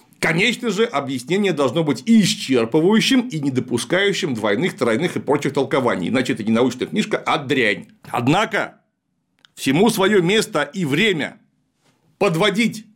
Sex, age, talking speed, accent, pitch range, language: male, 40-59, 130 wpm, native, 160-230 Hz, Russian